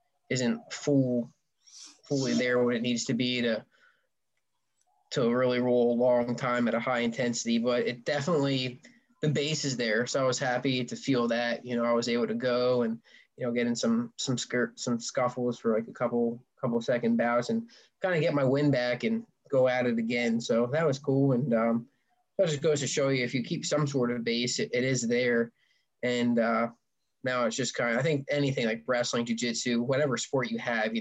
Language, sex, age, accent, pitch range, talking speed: English, male, 20-39, American, 120-140 Hz, 215 wpm